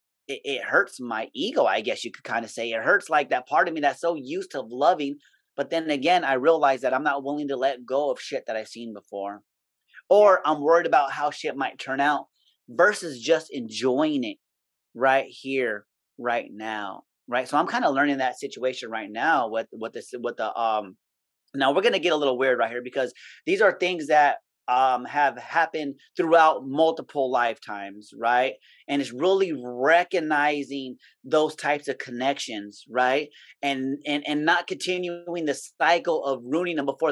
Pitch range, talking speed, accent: 125-155 Hz, 190 wpm, American